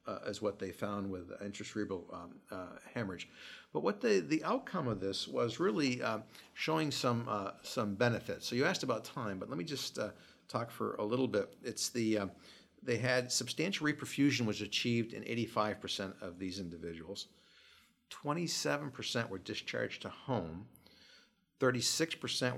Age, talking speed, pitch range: 50-69, 160 wpm, 100-130 Hz